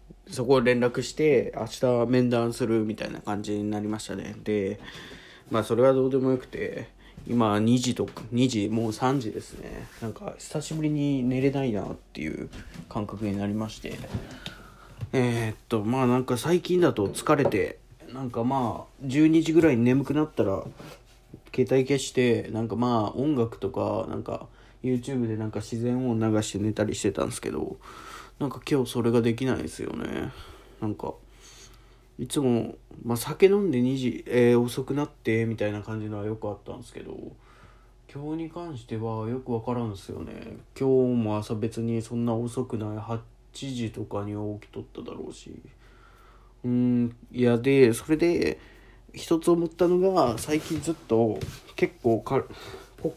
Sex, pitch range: male, 110-130 Hz